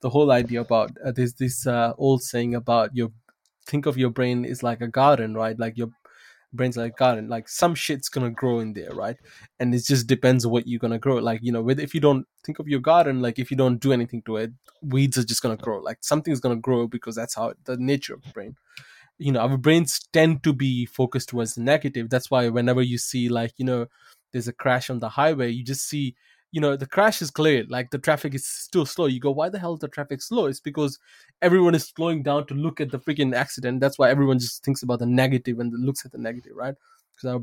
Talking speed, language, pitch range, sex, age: 255 wpm, English, 120-145 Hz, male, 20-39